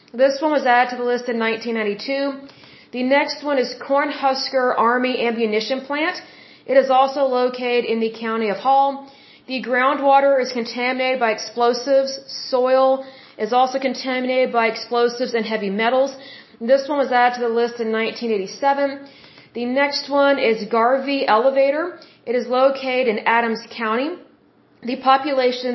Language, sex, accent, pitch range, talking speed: Hindi, female, American, 230-270 Hz, 150 wpm